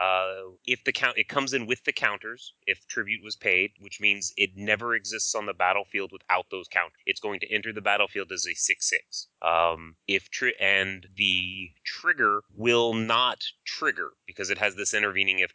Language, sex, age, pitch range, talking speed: English, male, 30-49, 95-115 Hz, 185 wpm